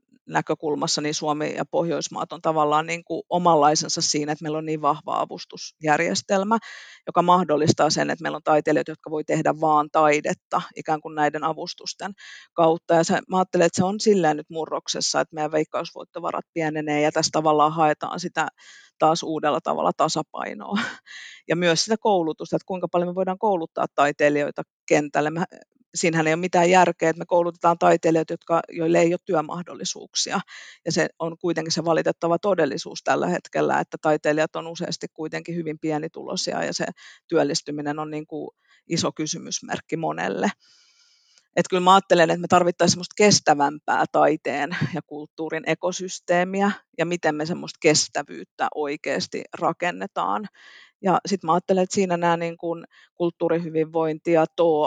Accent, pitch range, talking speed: native, 155-175 Hz, 150 wpm